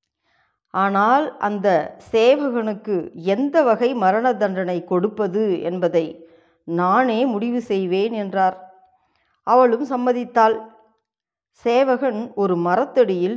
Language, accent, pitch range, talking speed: Tamil, native, 180-245 Hz, 80 wpm